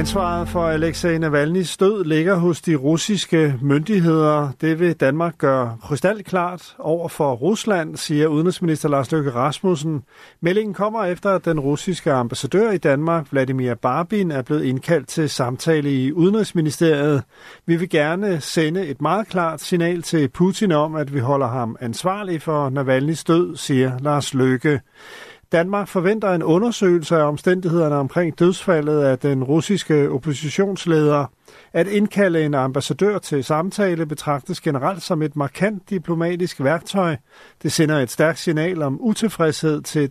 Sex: male